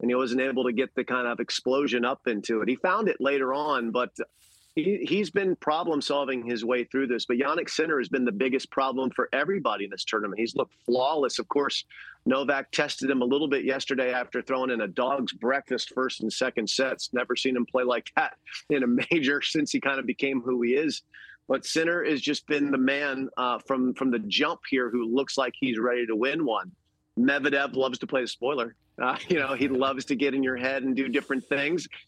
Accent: American